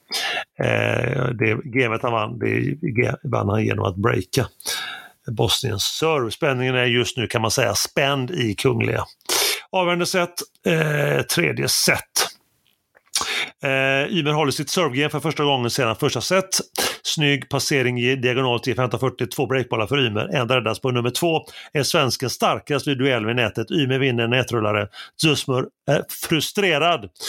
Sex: male